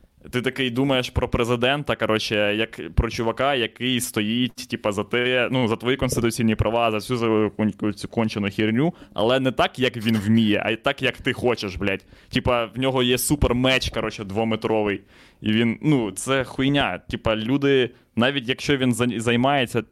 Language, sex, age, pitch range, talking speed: Ukrainian, male, 20-39, 105-125 Hz, 170 wpm